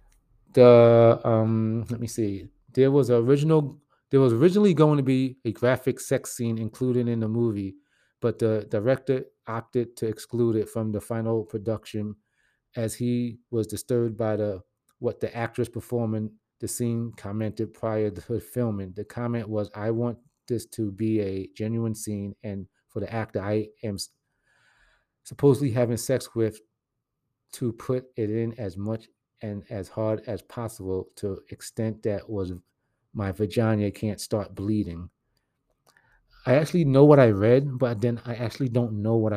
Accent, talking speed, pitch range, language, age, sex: American, 160 wpm, 110-130 Hz, English, 30-49, male